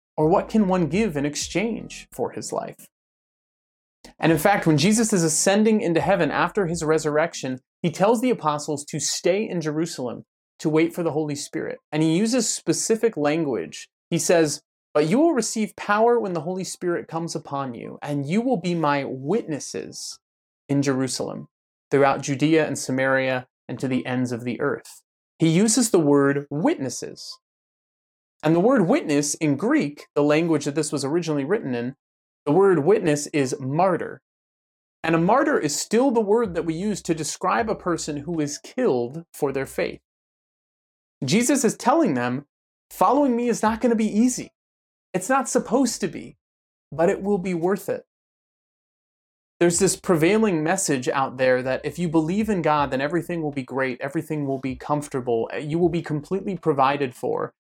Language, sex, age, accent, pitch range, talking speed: English, male, 30-49, American, 145-195 Hz, 175 wpm